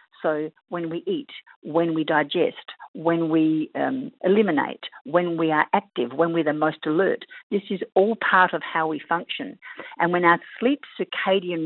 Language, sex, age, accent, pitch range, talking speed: English, female, 50-69, Australian, 160-240 Hz, 170 wpm